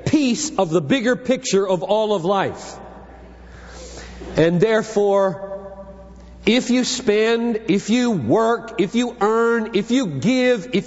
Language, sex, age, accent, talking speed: English, male, 50-69, American, 125 wpm